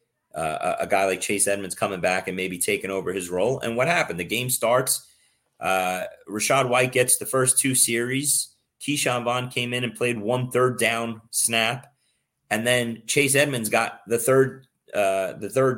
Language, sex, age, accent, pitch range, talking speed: English, male, 30-49, American, 115-135 Hz, 185 wpm